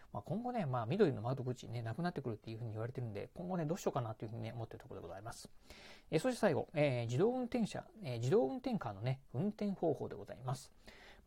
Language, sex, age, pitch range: Japanese, male, 40-59, 120-170 Hz